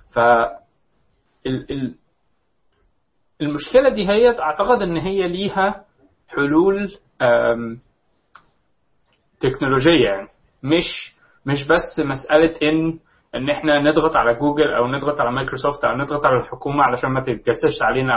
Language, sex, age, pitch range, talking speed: Arabic, male, 20-39, 130-165 Hz, 110 wpm